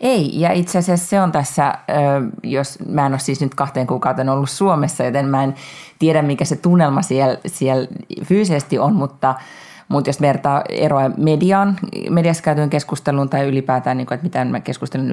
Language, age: Finnish, 30-49